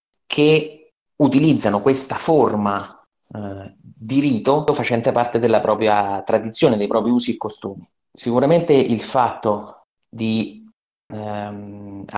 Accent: native